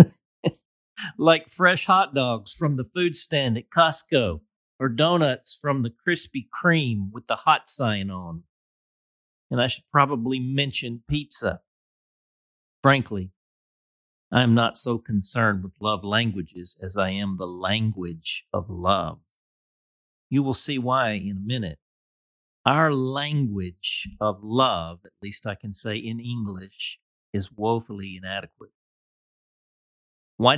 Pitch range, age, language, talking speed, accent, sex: 100-140 Hz, 50-69, English, 130 wpm, American, male